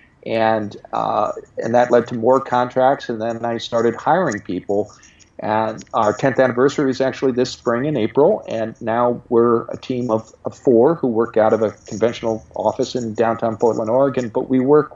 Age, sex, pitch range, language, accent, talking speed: 50-69, male, 110-135 Hz, English, American, 185 wpm